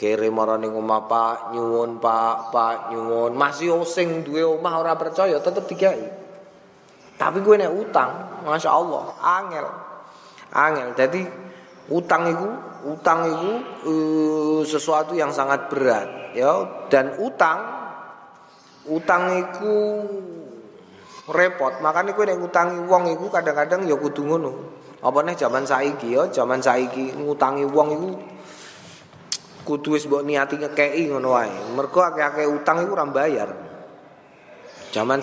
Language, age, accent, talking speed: Indonesian, 20-39, native, 125 wpm